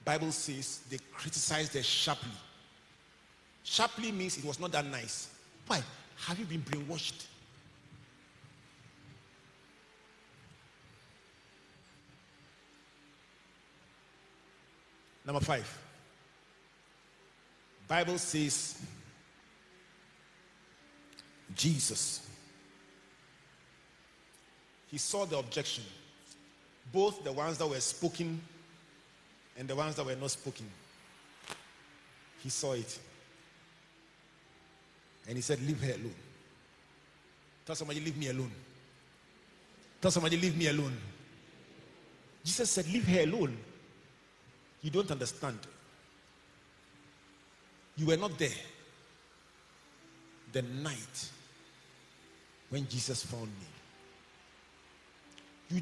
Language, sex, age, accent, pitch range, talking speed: English, male, 50-69, Nigerian, 110-160 Hz, 85 wpm